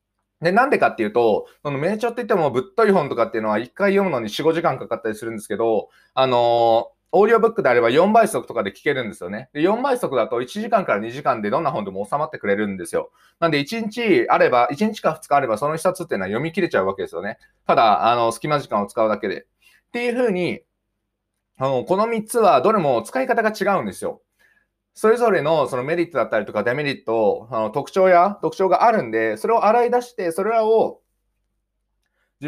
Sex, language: male, Japanese